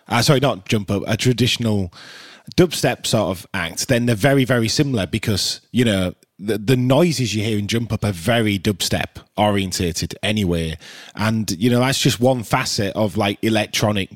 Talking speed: 175 wpm